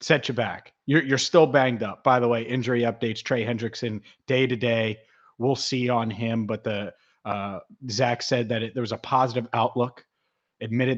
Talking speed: 190 wpm